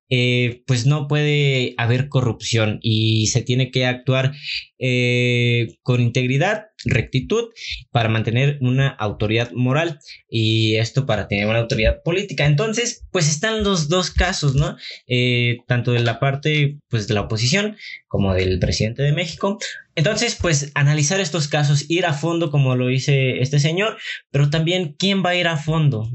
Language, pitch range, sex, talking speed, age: Spanish, 125-160 Hz, male, 160 wpm, 20-39